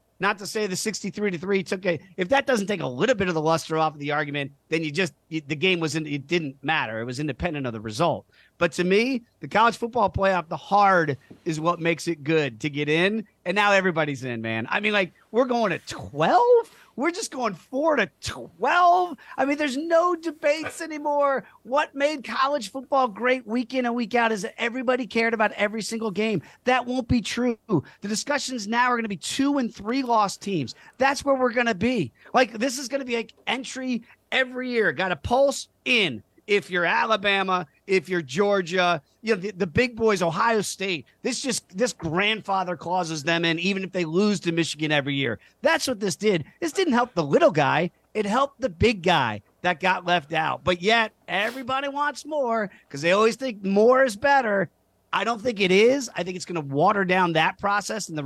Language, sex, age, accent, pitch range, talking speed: English, male, 40-59, American, 170-245 Hz, 215 wpm